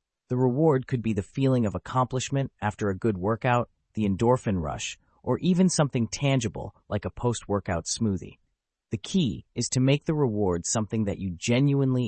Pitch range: 100-140 Hz